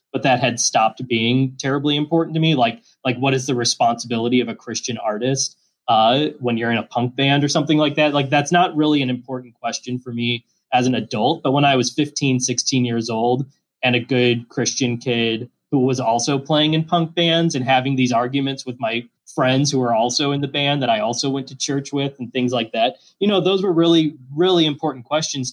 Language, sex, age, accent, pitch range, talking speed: English, male, 20-39, American, 120-150 Hz, 220 wpm